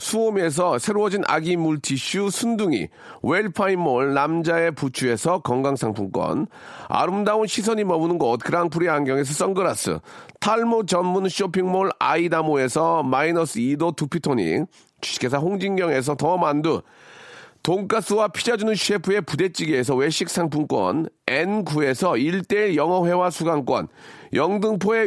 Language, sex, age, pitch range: Korean, male, 40-59, 165-210 Hz